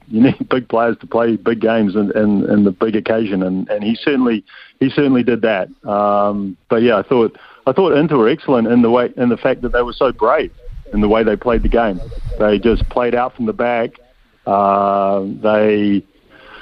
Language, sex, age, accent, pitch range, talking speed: English, male, 40-59, Australian, 105-125 Hz, 205 wpm